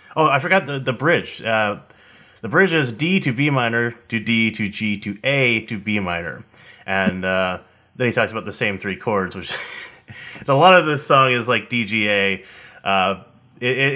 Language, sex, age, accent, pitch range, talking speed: English, male, 30-49, American, 110-135 Hz, 195 wpm